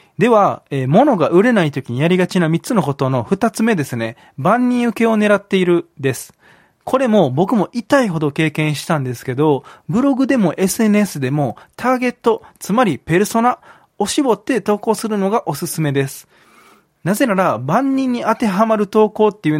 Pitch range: 150-235 Hz